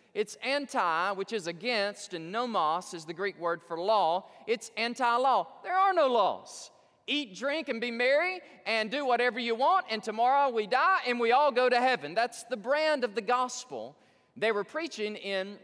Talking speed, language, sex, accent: 190 wpm, English, male, American